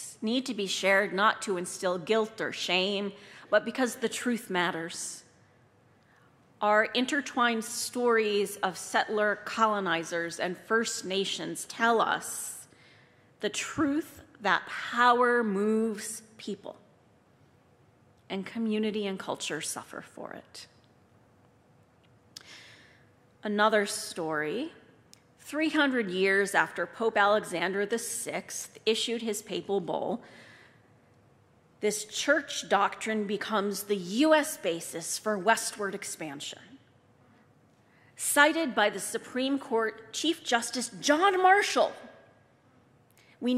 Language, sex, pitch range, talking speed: English, female, 185-240 Hz, 100 wpm